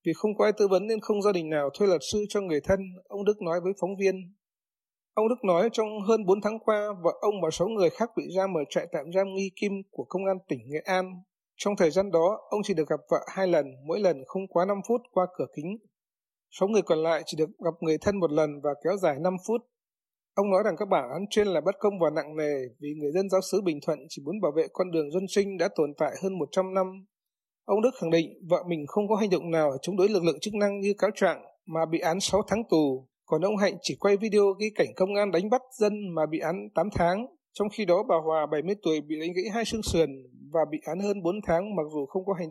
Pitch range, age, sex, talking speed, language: 160-205 Hz, 20-39, male, 270 wpm, Vietnamese